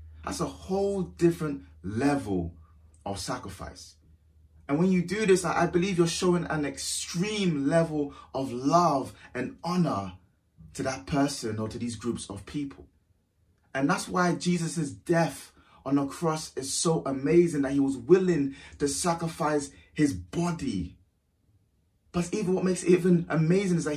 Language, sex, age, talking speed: English, male, 30-49, 150 wpm